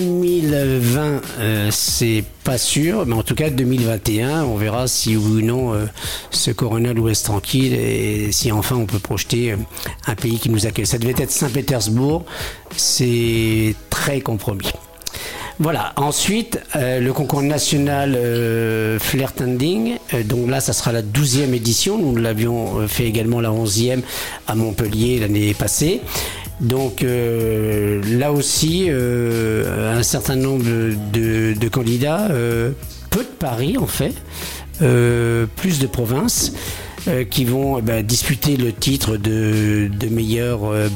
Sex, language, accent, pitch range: male, French, French, 110-130 Hz